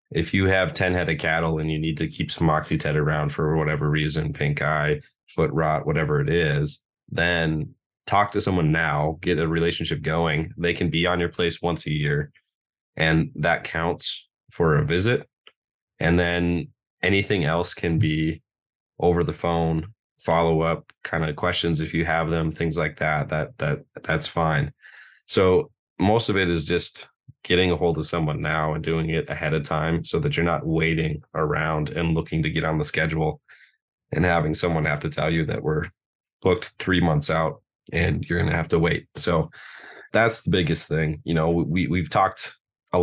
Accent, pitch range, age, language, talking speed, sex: American, 80-90 Hz, 20-39, English, 190 wpm, male